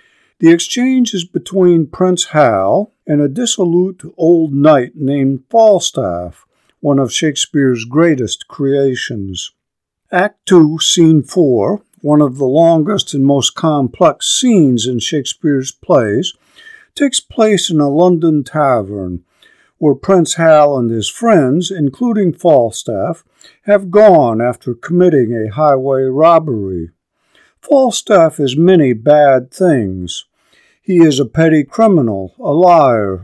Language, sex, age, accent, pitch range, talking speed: English, male, 50-69, American, 130-185 Hz, 120 wpm